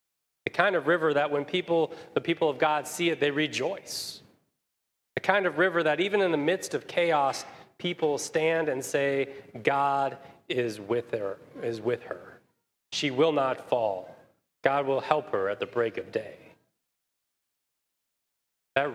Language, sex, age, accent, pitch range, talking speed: English, male, 30-49, American, 140-170 Hz, 160 wpm